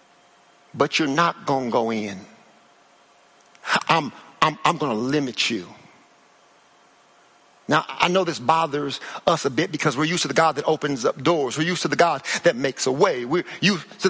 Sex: male